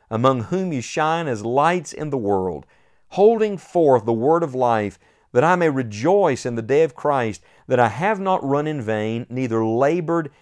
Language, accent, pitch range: English, American, 115-160 Hz